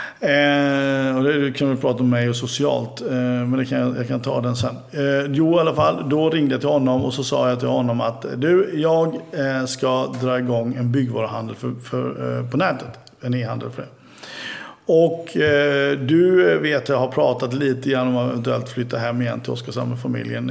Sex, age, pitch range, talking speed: male, 50-69, 120-140 Hz, 200 wpm